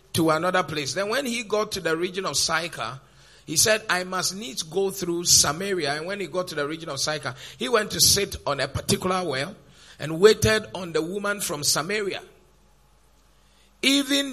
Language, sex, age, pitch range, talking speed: English, male, 50-69, 135-185 Hz, 190 wpm